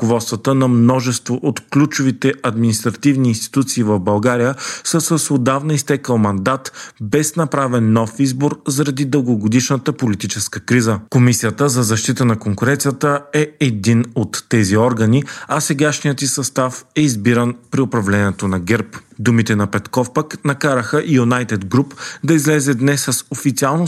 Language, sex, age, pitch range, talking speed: Bulgarian, male, 40-59, 110-140 Hz, 135 wpm